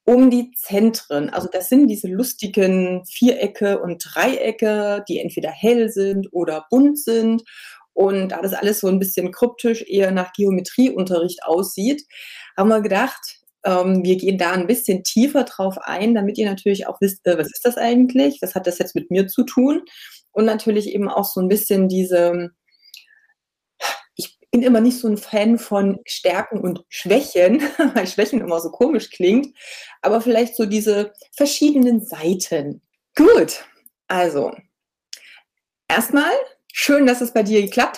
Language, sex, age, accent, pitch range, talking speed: German, female, 30-49, German, 185-240 Hz, 155 wpm